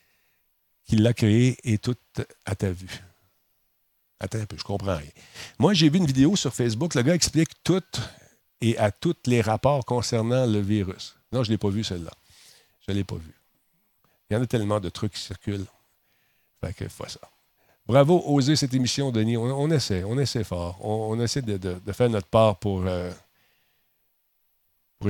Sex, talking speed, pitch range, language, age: male, 195 wpm, 100-125 Hz, French, 50-69